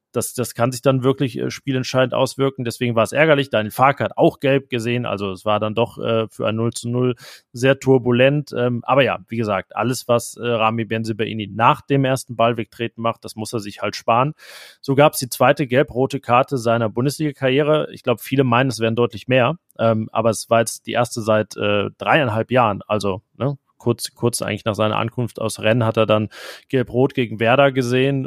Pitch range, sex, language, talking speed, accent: 115-135 Hz, male, German, 210 wpm, German